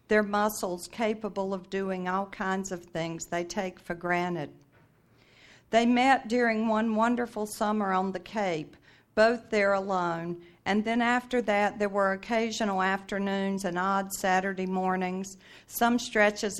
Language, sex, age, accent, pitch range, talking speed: English, female, 50-69, American, 185-215 Hz, 140 wpm